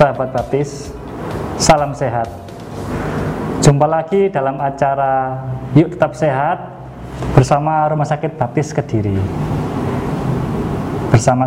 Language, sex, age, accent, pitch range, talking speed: Indonesian, male, 20-39, native, 120-150 Hz, 90 wpm